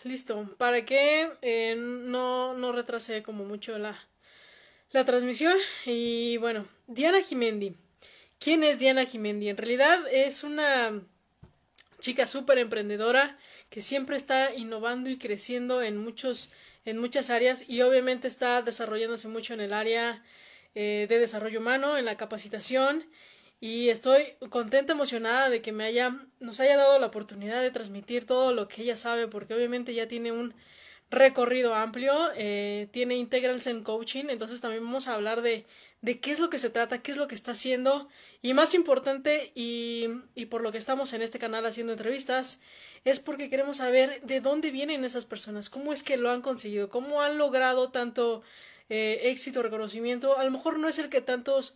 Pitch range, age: 225-265 Hz, 20-39